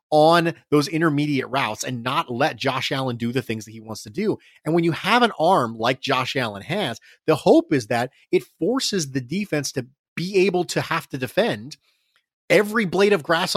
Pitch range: 140-190 Hz